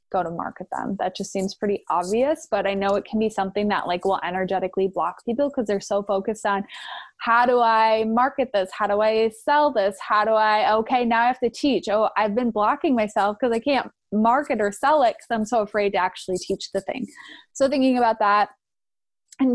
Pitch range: 200-240 Hz